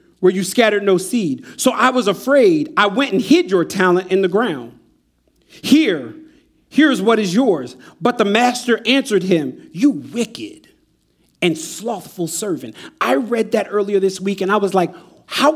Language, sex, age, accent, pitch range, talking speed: English, male, 40-59, American, 195-280 Hz, 170 wpm